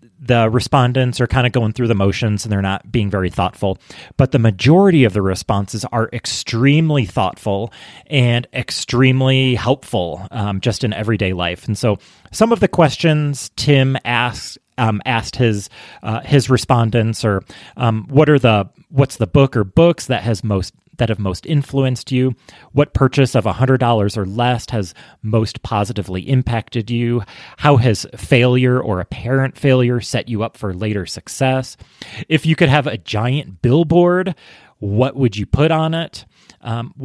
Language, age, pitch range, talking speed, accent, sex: English, 30-49, 110-135 Hz, 170 wpm, American, male